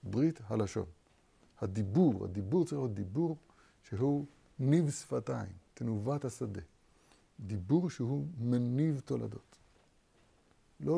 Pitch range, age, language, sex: 105-145 Hz, 60-79, Hebrew, male